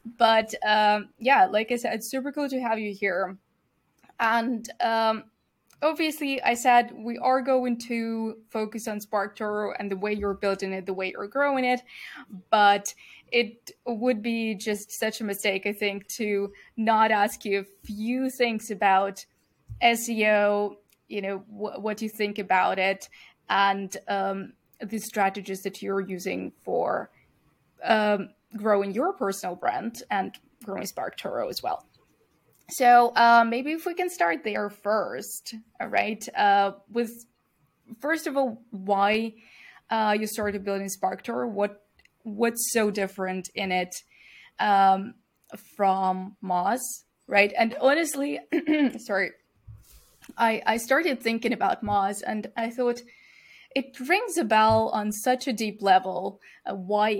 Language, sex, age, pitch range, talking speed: English, female, 20-39, 200-240 Hz, 140 wpm